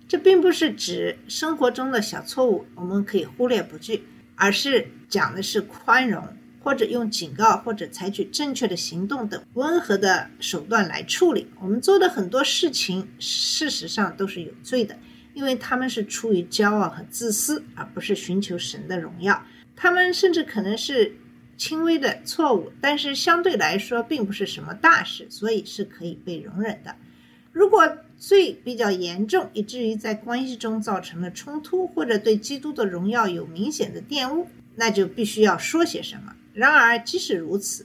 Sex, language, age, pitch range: female, Chinese, 50-69, 195-275 Hz